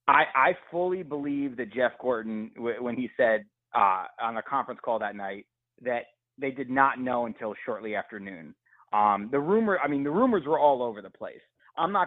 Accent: American